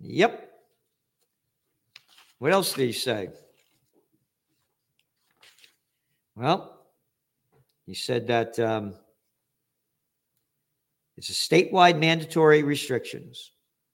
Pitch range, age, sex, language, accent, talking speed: 125-170 Hz, 50-69, male, English, American, 70 wpm